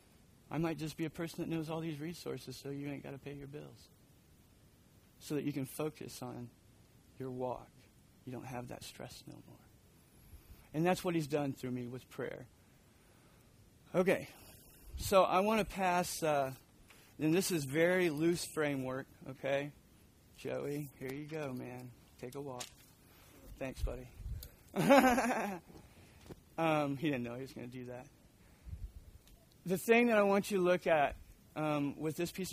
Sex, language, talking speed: male, English, 165 wpm